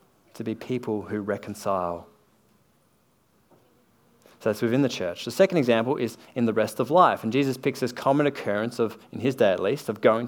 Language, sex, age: English, male, 30-49